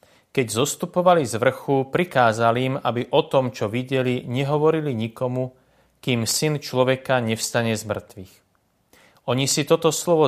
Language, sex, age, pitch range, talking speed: Slovak, male, 30-49, 110-145 Hz, 135 wpm